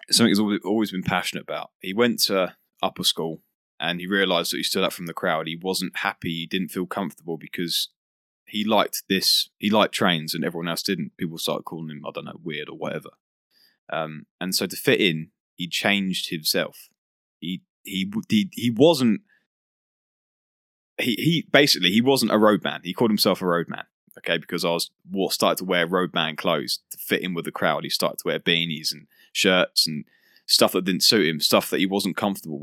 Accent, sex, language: British, male, English